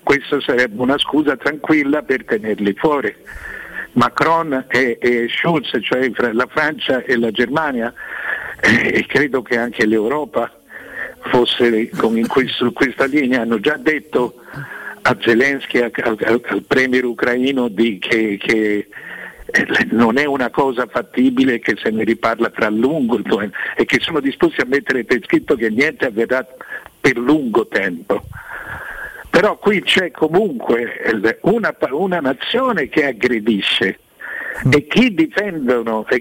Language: Italian